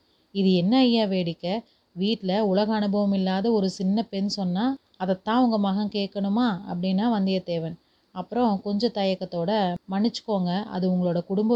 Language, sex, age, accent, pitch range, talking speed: Tamil, female, 30-49, native, 185-215 Hz, 130 wpm